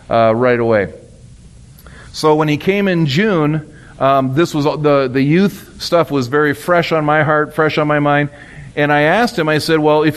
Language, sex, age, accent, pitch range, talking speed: English, male, 40-59, American, 140-165 Hz, 200 wpm